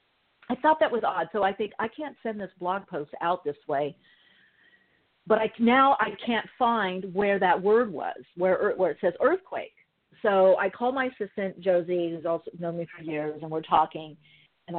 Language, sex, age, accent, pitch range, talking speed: English, female, 50-69, American, 160-220 Hz, 195 wpm